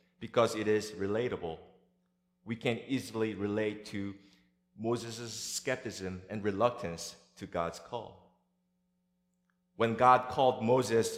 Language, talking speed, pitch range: English, 105 wpm, 110-175 Hz